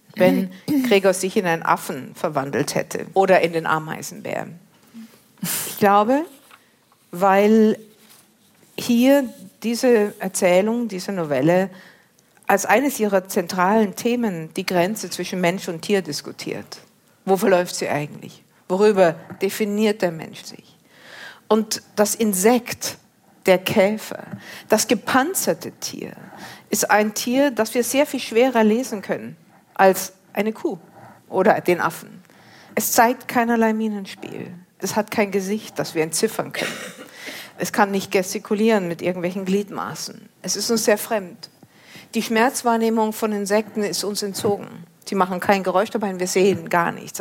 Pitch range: 185-225 Hz